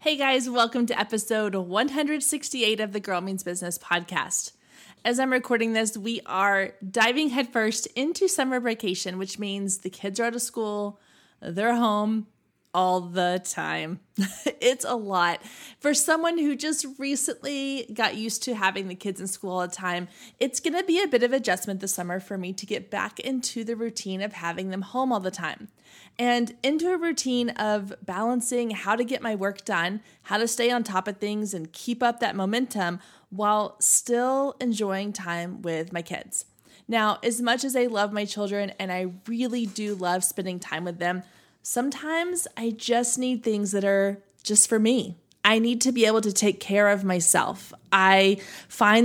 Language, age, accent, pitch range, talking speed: English, 20-39, American, 190-245 Hz, 180 wpm